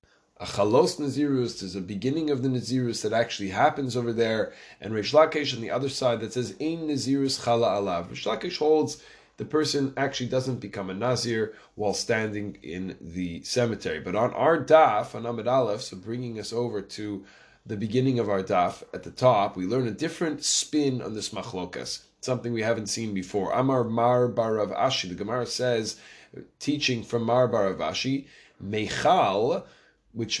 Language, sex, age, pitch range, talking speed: English, male, 20-39, 105-140 Hz, 170 wpm